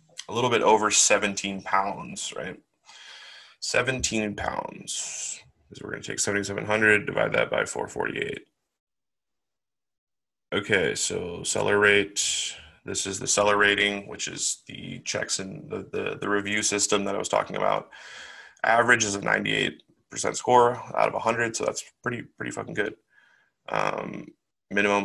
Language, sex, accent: English, male, American